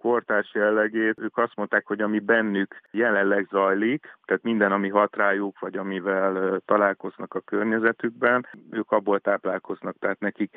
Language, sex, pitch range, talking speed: Hungarian, male, 95-110 Hz, 135 wpm